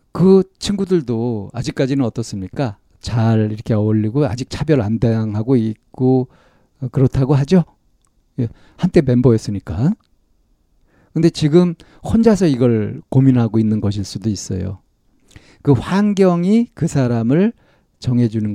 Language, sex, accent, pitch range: Korean, male, native, 110-150 Hz